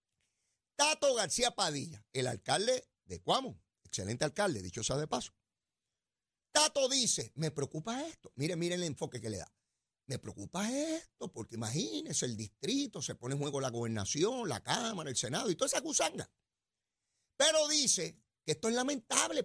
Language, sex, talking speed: Spanish, male, 155 wpm